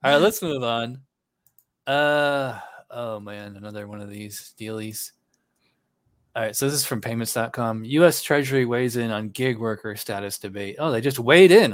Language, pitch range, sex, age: English, 115-150 Hz, male, 20-39